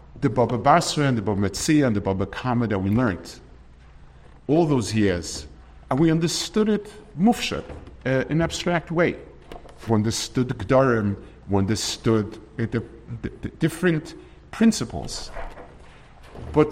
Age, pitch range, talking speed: 50-69, 105-150 Hz, 145 wpm